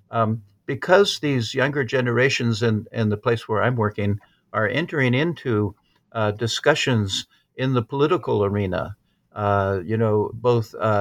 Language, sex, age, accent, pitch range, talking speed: English, male, 50-69, American, 110-140 Hz, 135 wpm